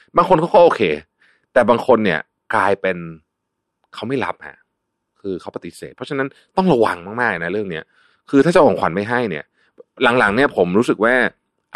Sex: male